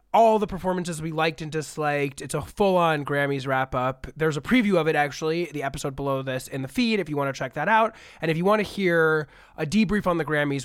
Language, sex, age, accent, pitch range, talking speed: English, male, 20-39, American, 135-180 Hz, 240 wpm